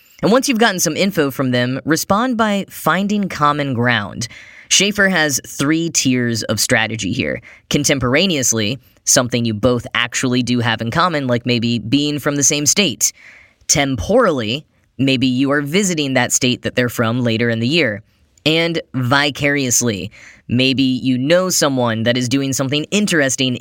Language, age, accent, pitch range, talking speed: English, 10-29, American, 120-155 Hz, 155 wpm